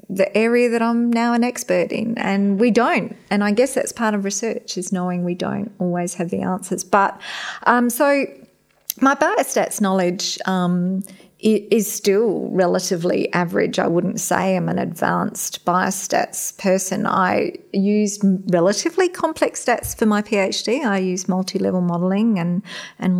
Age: 30-49